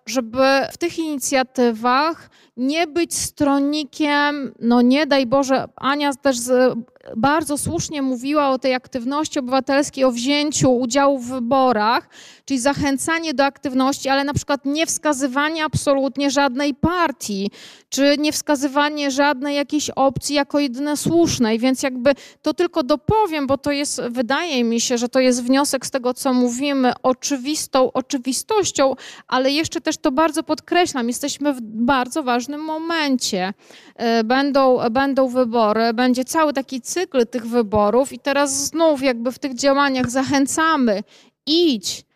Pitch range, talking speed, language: 255-295 Hz, 135 wpm, Polish